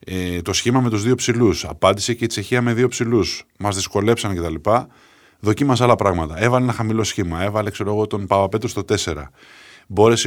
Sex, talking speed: male, 185 wpm